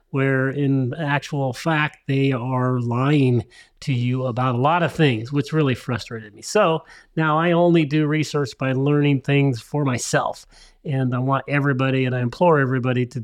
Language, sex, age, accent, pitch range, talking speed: English, male, 30-49, American, 135-165 Hz, 170 wpm